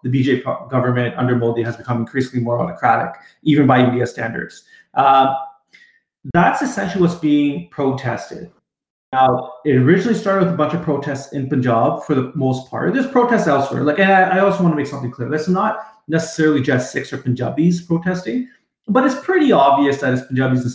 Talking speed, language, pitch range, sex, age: 185 wpm, English, 125-160 Hz, male, 30-49